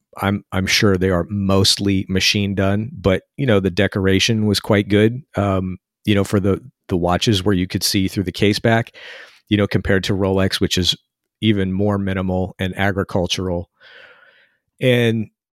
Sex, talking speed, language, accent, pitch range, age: male, 170 wpm, English, American, 90-105 Hz, 40-59